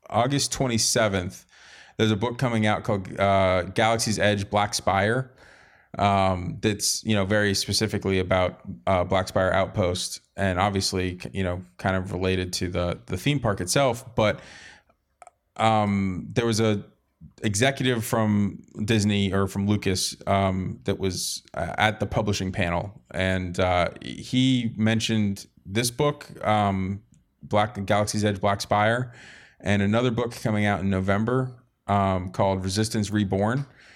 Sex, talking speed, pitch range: male, 140 wpm, 95-110 Hz